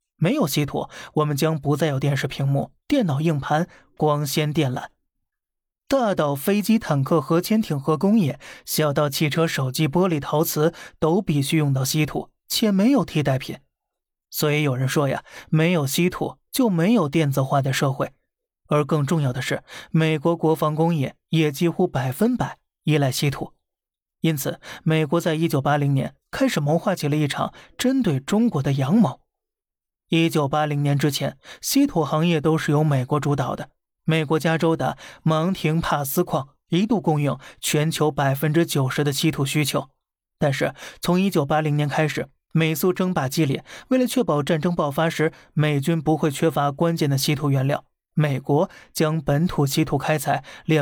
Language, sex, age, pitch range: Chinese, male, 20-39, 145-170 Hz